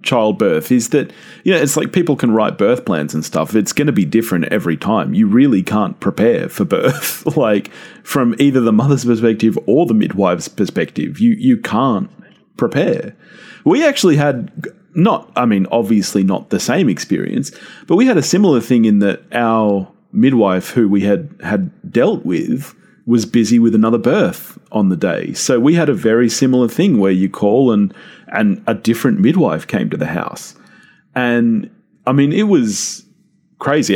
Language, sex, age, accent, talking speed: English, male, 30-49, Australian, 180 wpm